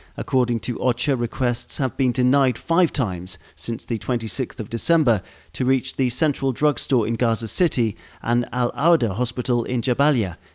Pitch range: 115-140 Hz